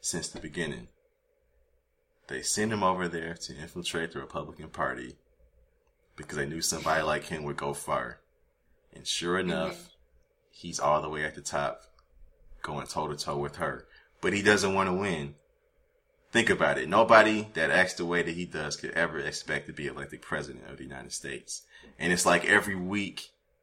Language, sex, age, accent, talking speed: English, male, 20-39, American, 180 wpm